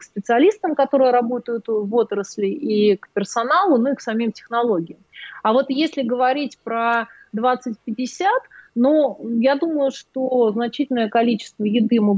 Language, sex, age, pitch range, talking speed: Russian, female, 30-49, 210-255 Hz, 140 wpm